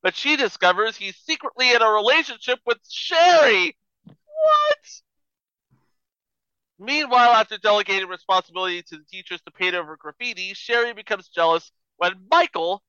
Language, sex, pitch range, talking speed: English, male, 170-235 Hz, 125 wpm